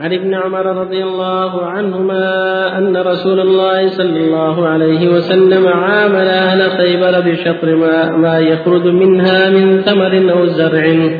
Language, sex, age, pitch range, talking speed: Arabic, male, 50-69, 165-190 Hz, 135 wpm